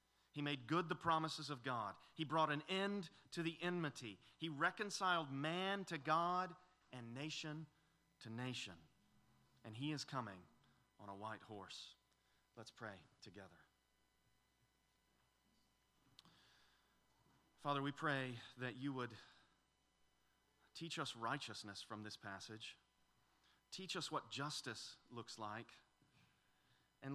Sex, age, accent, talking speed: male, 40-59, American, 115 wpm